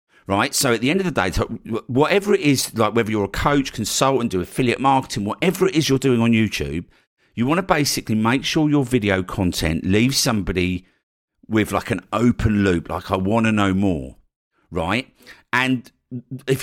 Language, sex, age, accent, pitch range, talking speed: English, male, 50-69, British, 90-115 Hz, 190 wpm